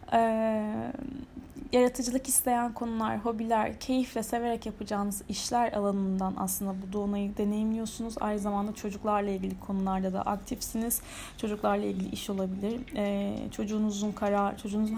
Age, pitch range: 10-29, 195-240 Hz